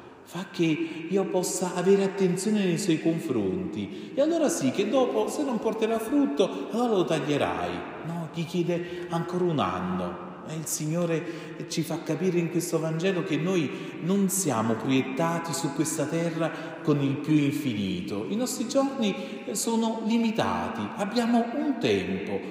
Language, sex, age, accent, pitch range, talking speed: Italian, male, 40-59, native, 145-195 Hz, 150 wpm